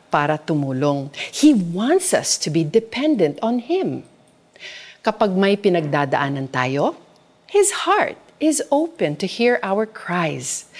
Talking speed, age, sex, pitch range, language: 120 wpm, 40-59, female, 170-245 Hz, Filipino